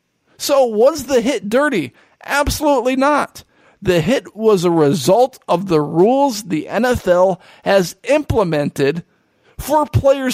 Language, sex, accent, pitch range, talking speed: English, male, American, 185-245 Hz, 120 wpm